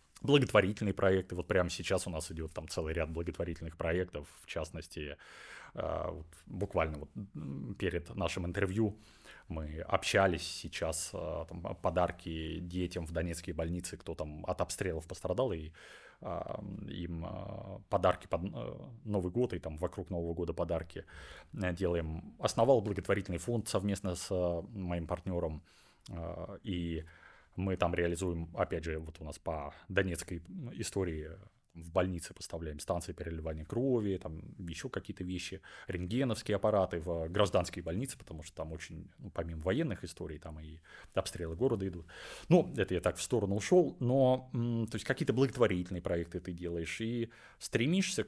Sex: male